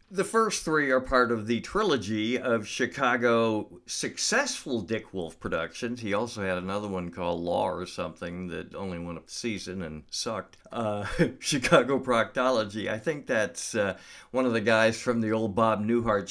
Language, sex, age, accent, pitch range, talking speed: English, male, 50-69, American, 95-120 Hz, 175 wpm